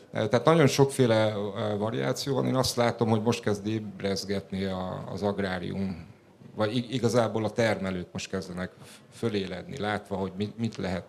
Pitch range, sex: 100-120 Hz, male